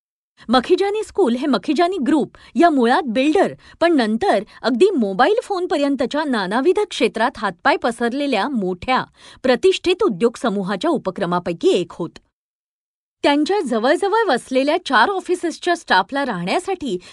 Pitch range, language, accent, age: 225-350 Hz, Marathi, native, 40-59